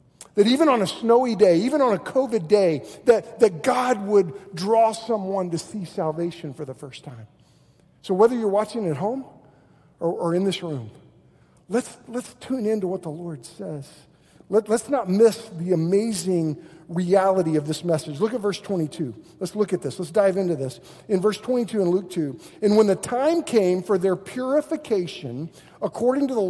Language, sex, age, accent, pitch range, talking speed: English, male, 50-69, American, 165-225 Hz, 190 wpm